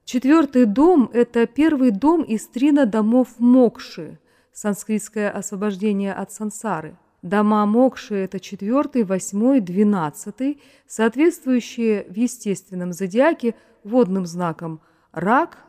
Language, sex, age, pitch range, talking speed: Russian, female, 30-49, 180-240 Hz, 100 wpm